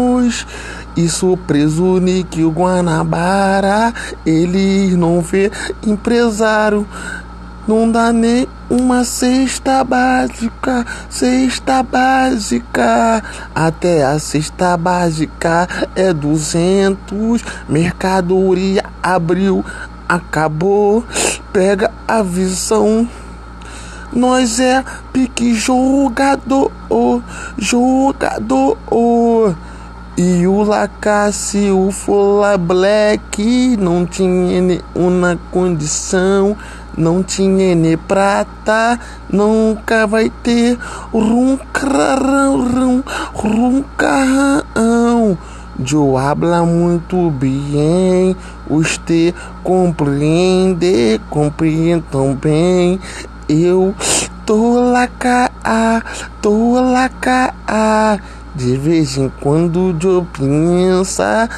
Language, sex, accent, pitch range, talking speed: English, male, Brazilian, 170-230 Hz, 75 wpm